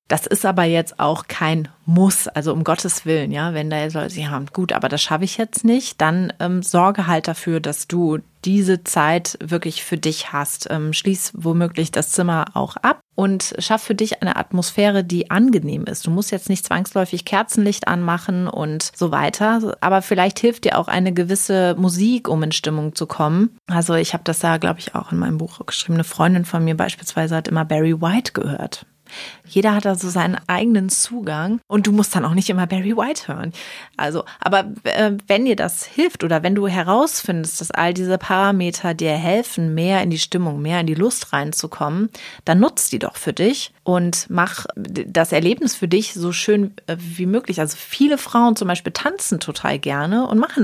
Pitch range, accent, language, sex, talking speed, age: 165-205 Hz, German, German, female, 200 wpm, 30-49